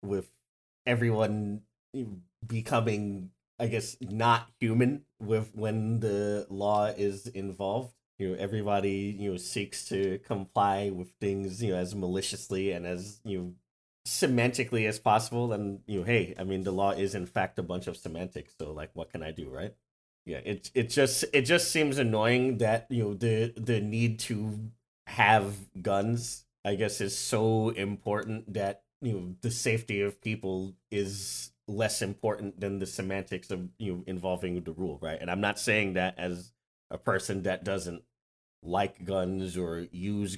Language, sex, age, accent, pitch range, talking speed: English, male, 30-49, American, 90-110 Hz, 165 wpm